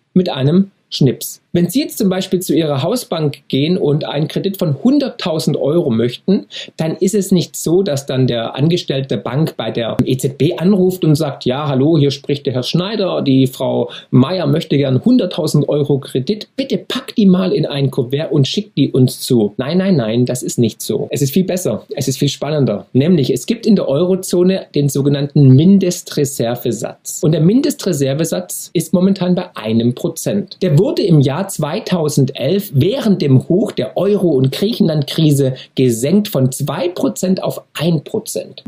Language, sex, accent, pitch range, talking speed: German, male, German, 135-190 Hz, 170 wpm